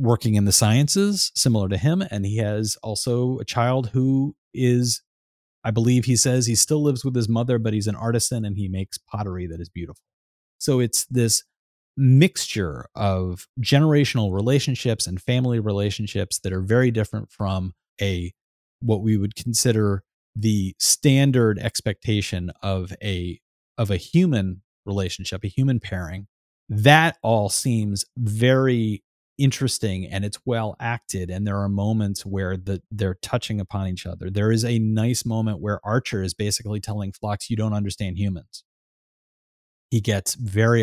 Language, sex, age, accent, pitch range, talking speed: English, male, 30-49, American, 100-125 Hz, 155 wpm